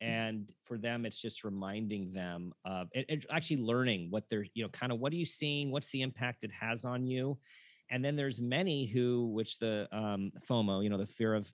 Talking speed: 225 wpm